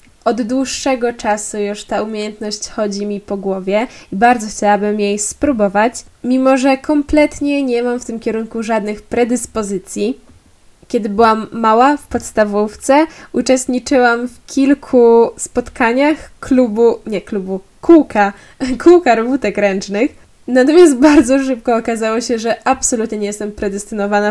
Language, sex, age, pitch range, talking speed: Polish, female, 10-29, 215-250 Hz, 125 wpm